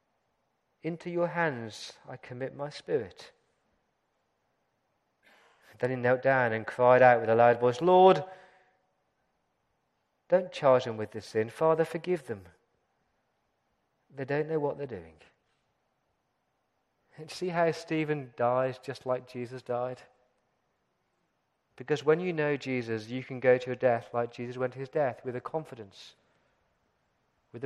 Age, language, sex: 40-59, English, male